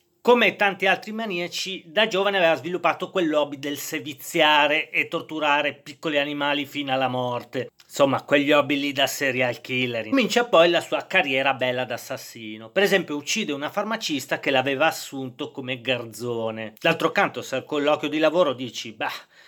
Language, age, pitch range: Italian, 40-59, 135-180 Hz